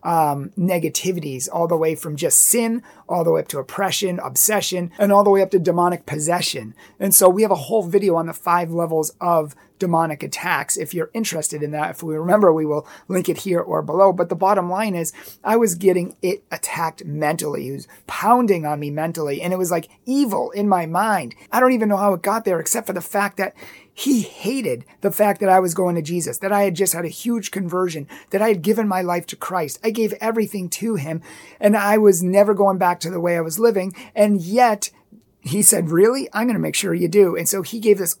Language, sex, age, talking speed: English, male, 30-49, 235 wpm